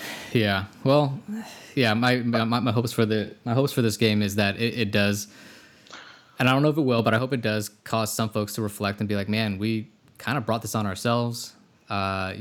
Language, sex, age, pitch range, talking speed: English, male, 20-39, 105-120 Hz, 230 wpm